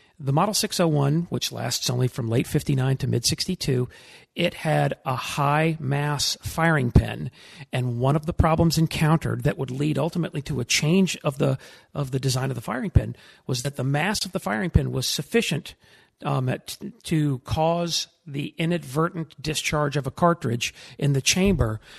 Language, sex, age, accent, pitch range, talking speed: English, male, 40-59, American, 135-165 Hz, 170 wpm